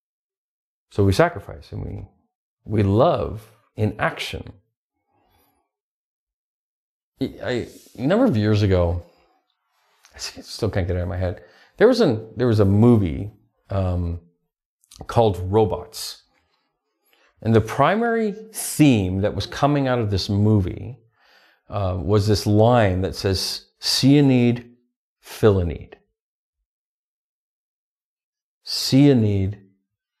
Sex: male